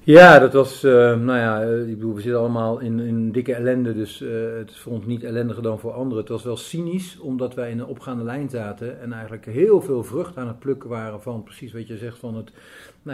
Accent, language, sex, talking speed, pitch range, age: Dutch, English, male, 245 wpm, 110-125 Hz, 50-69